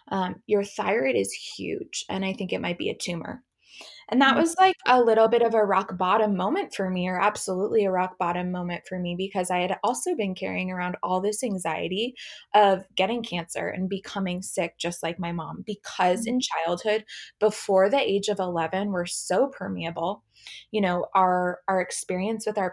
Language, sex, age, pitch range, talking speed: English, female, 20-39, 180-215 Hz, 190 wpm